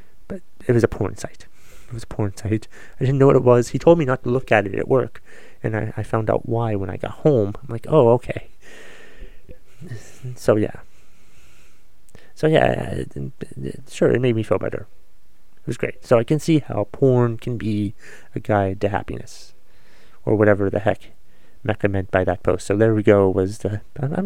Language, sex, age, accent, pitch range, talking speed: English, male, 30-49, American, 100-125 Hz, 210 wpm